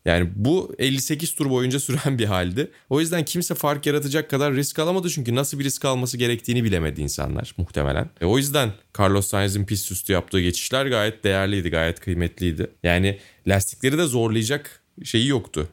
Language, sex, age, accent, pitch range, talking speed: Turkish, male, 30-49, native, 90-125 Hz, 170 wpm